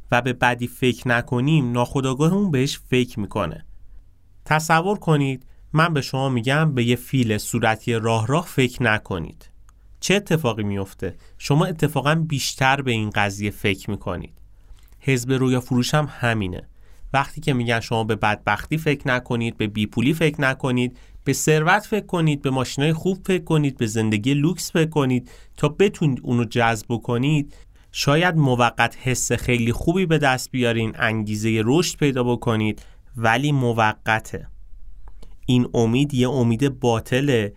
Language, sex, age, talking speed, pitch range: Persian, male, 30-49, 140 wpm, 105-145 Hz